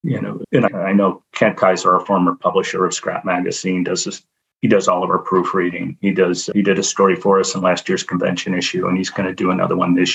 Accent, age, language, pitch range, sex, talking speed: American, 40-59, English, 90-100 Hz, male, 250 wpm